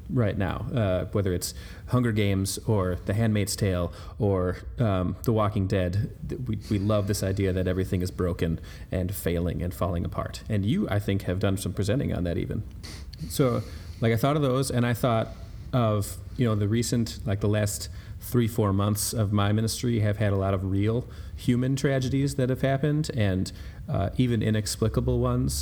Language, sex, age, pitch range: English, male, 30-49, 95-110 Hz